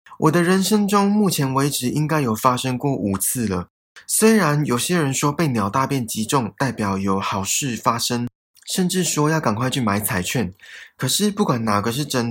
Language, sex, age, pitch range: Chinese, male, 20-39, 110-155 Hz